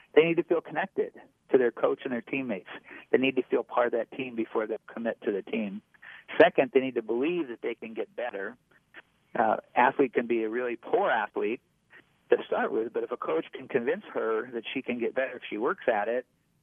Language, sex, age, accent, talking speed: English, male, 50-69, American, 225 wpm